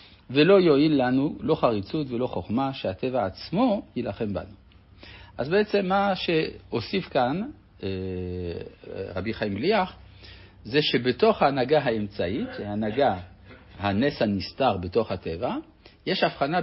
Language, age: Hebrew, 60-79